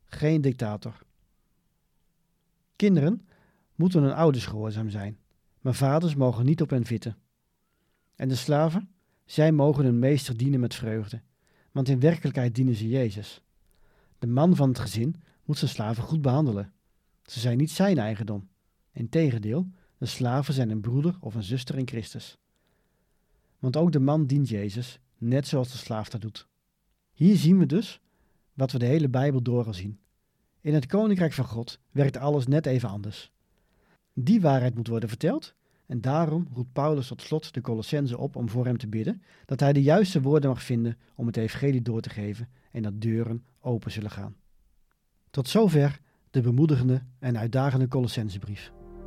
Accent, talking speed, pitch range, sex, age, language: Dutch, 165 wpm, 115-150 Hz, male, 40-59, Dutch